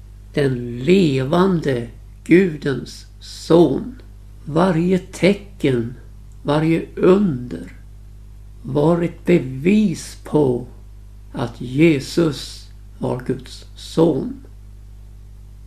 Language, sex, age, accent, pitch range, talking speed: Swedish, male, 60-79, native, 100-165 Hz, 65 wpm